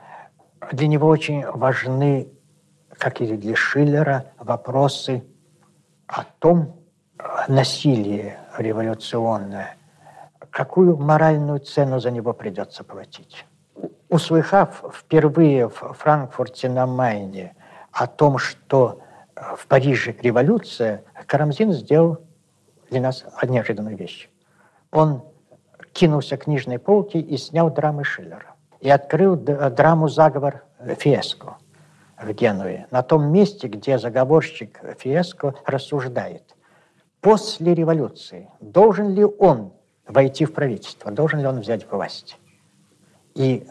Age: 60-79